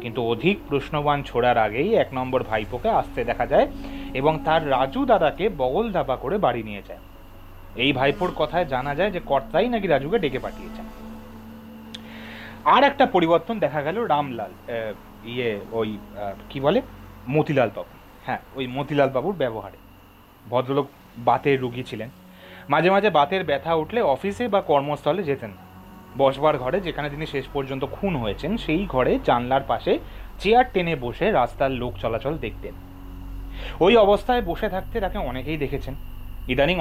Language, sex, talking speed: Bengali, male, 145 wpm